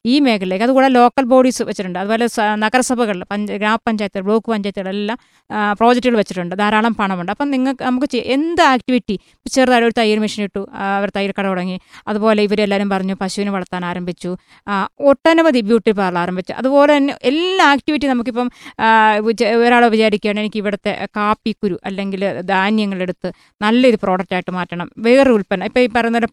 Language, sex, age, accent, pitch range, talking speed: Malayalam, female, 20-39, native, 200-245 Hz, 140 wpm